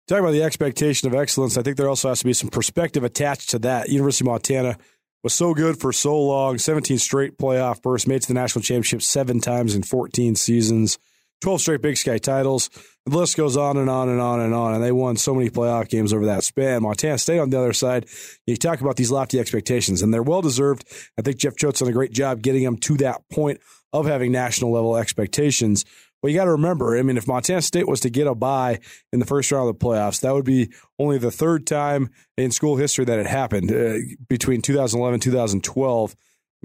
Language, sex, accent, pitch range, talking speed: English, male, American, 120-150 Hz, 225 wpm